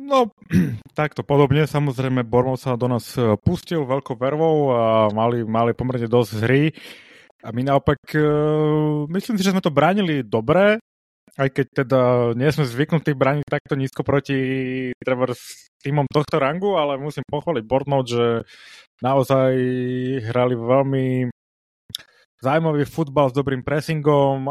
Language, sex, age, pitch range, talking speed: Slovak, male, 30-49, 125-150 Hz, 135 wpm